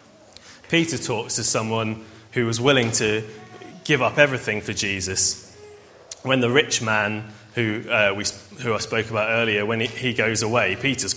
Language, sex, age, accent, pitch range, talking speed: English, male, 20-39, British, 110-130 Hz, 155 wpm